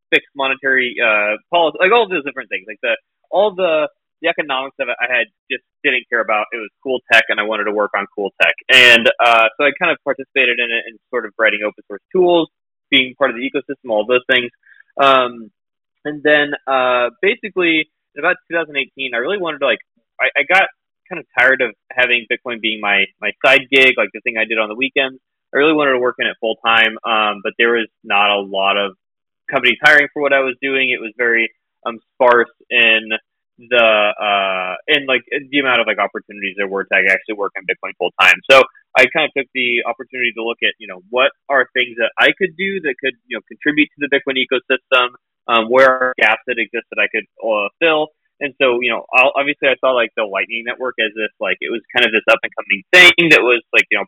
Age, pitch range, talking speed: 20-39, 110-140 Hz, 230 wpm